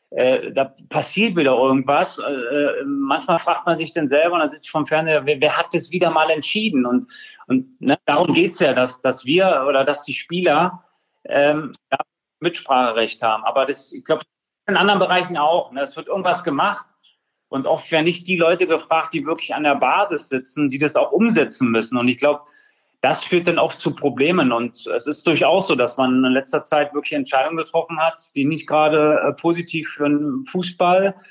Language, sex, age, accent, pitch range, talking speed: German, male, 30-49, German, 140-175 Hz, 200 wpm